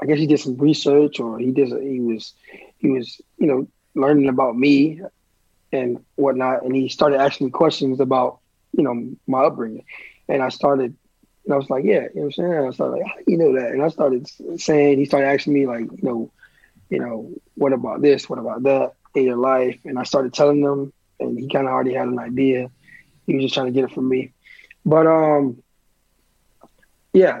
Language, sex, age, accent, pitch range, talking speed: English, male, 20-39, American, 125-145 Hz, 215 wpm